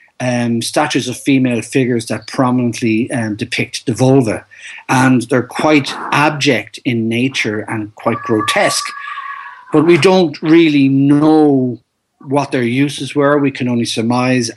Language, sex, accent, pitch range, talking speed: English, male, Irish, 115-145 Hz, 135 wpm